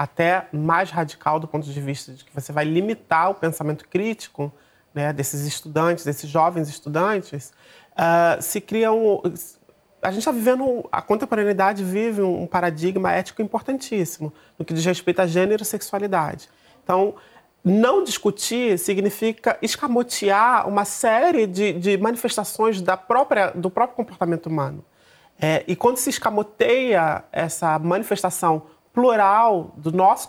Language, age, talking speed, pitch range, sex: Portuguese, 30-49, 140 wpm, 165-220 Hz, male